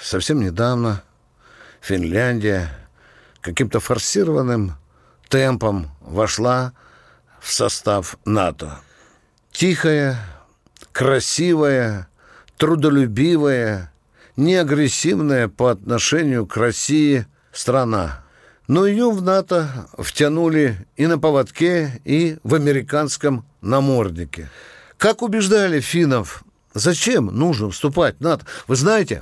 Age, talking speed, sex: 60-79, 85 wpm, male